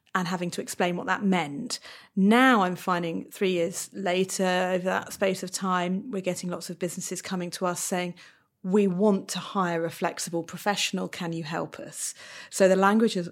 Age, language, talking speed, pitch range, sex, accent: 40-59, English, 185 wpm, 175-220 Hz, female, British